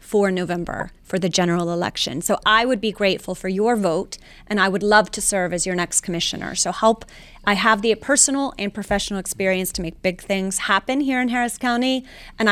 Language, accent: English, American